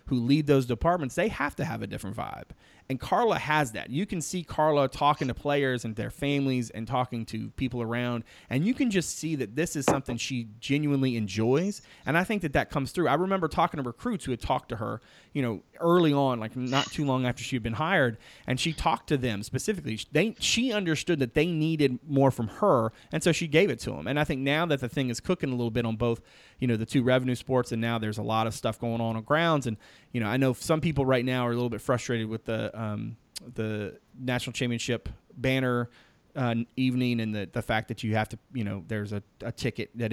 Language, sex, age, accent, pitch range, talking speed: English, male, 30-49, American, 115-145 Hz, 245 wpm